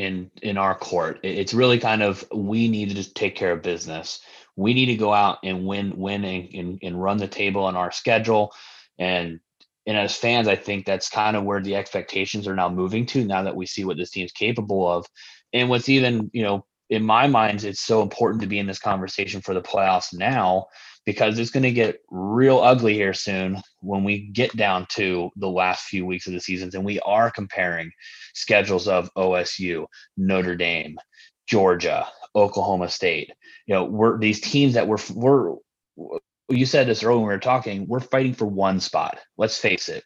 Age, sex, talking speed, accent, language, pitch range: 30-49, male, 200 wpm, American, English, 95-115 Hz